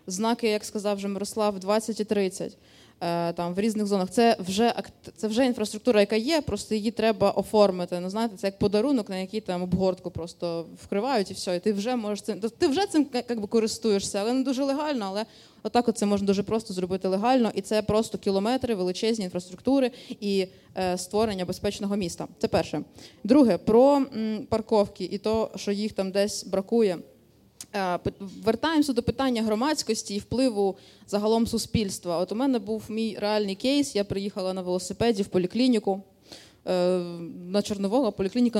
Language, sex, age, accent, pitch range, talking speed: Ukrainian, female, 20-39, native, 195-225 Hz, 165 wpm